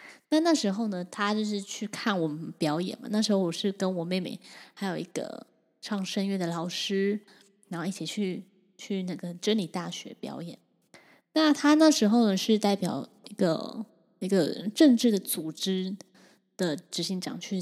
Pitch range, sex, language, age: 185-225 Hz, female, Chinese, 10-29